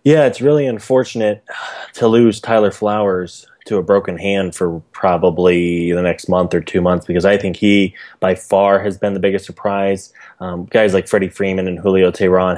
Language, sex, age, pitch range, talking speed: English, male, 20-39, 90-100 Hz, 185 wpm